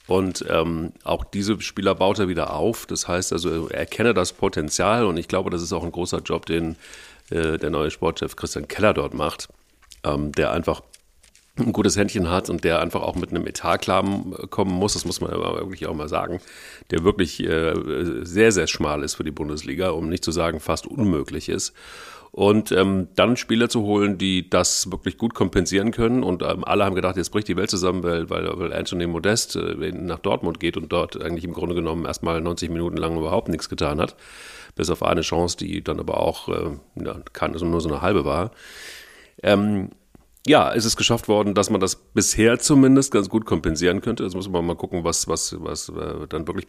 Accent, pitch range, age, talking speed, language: German, 85-105 Hz, 40-59, 205 wpm, German